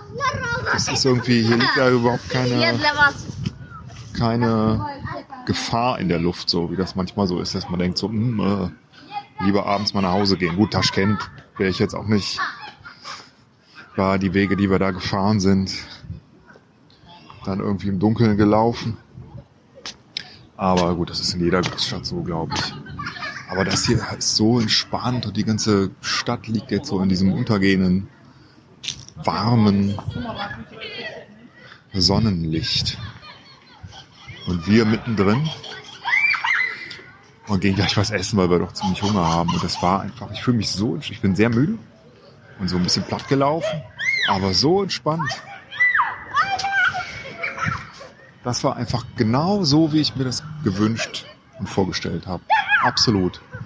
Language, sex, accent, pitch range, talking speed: German, male, German, 95-120 Hz, 145 wpm